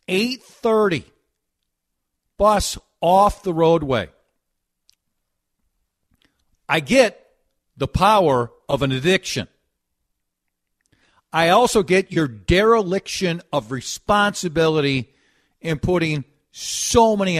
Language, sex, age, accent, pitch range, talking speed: English, male, 50-69, American, 100-165 Hz, 75 wpm